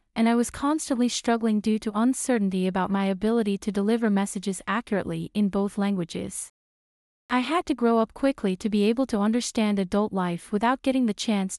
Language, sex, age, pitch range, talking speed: English, female, 30-49, 200-240 Hz, 180 wpm